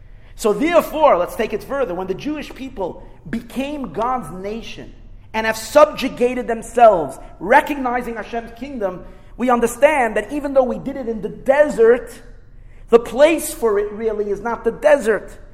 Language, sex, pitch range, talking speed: English, male, 190-260 Hz, 155 wpm